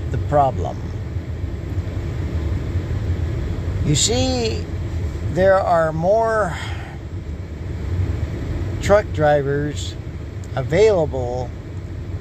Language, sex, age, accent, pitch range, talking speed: English, male, 60-79, American, 90-110 Hz, 50 wpm